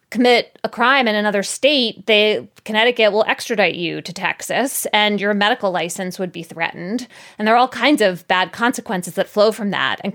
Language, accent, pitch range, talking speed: English, American, 190-235 Hz, 190 wpm